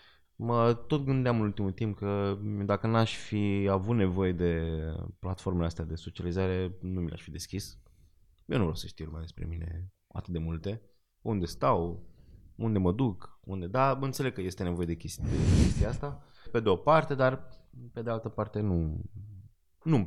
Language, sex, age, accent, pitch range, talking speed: Romanian, male, 20-39, native, 90-115 Hz, 175 wpm